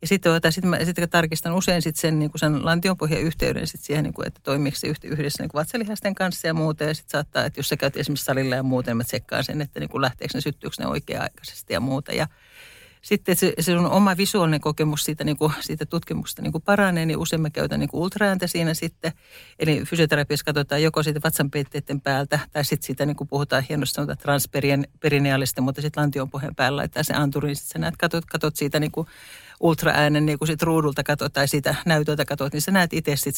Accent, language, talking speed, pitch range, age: native, Finnish, 205 wpm, 145-165 Hz, 60-79